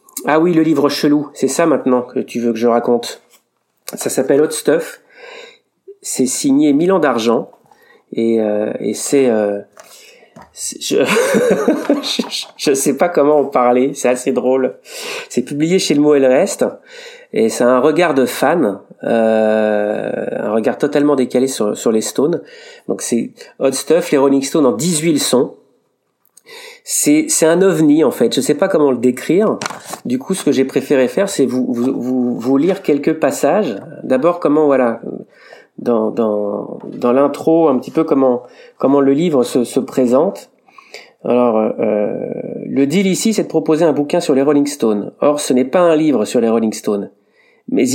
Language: French